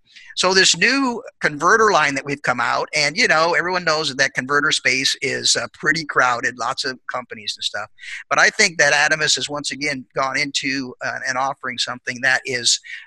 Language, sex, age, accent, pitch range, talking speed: English, male, 50-69, American, 130-155 Hz, 195 wpm